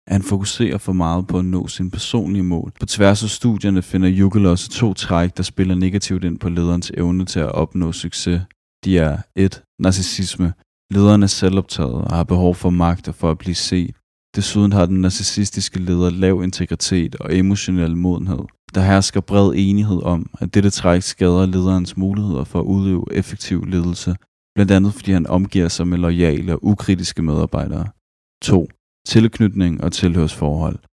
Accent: native